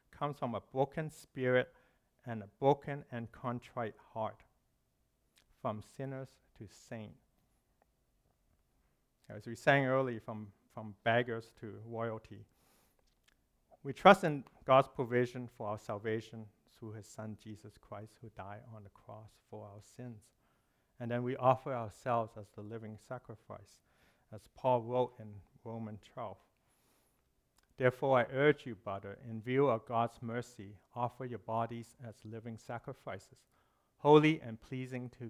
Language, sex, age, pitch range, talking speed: English, male, 50-69, 110-125 Hz, 135 wpm